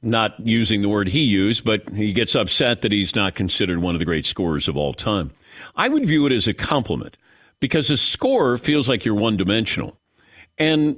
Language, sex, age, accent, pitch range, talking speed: English, male, 50-69, American, 115-160 Hz, 200 wpm